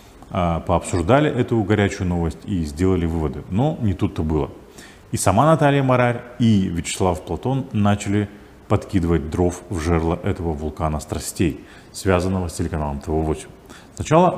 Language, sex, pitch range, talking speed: Russian, male, 85-115 Hz, 130 wpm